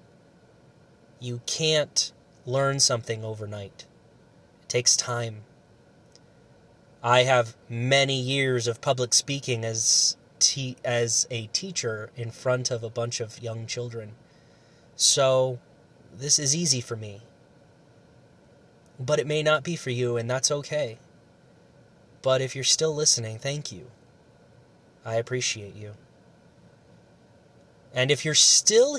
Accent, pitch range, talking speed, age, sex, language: American, 115-145 Hz, 120 wpm, 30-49, male, English